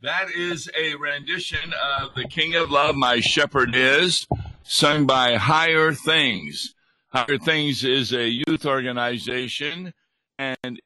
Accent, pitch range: American, 125-155 Hz